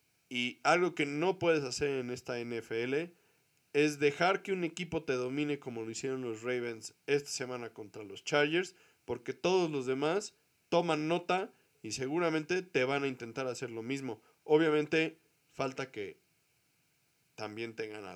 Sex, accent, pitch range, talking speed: male, Mexican, 125-165 Hz, 155 wpm